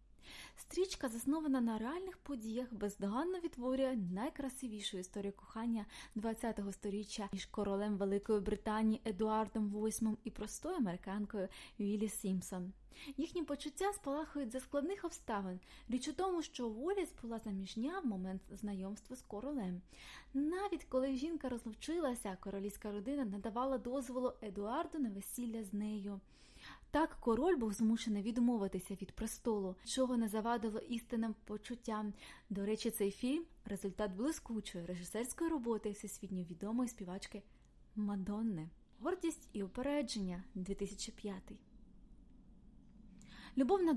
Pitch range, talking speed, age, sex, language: 205-260 Hz, 115 wpm, 20-39, female, Ukrainian